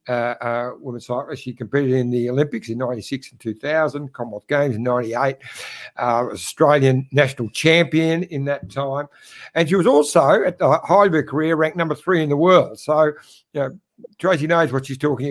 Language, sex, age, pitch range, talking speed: English, male, 60-79, 130-165 Hz, 190 wpm